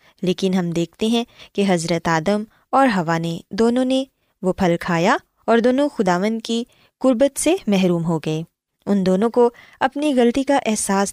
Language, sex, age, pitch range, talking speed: Urdu, female, 20-39, 185-245 Hz, 160 wpm